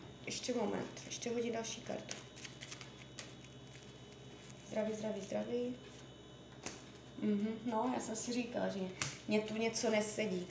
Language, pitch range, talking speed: Czech, 205-245 Hz, 115 wpm